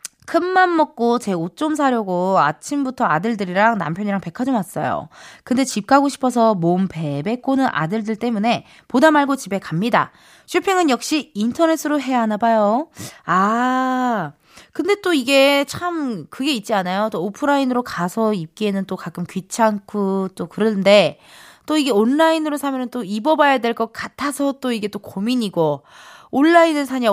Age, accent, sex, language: 20-39, native, female, Korean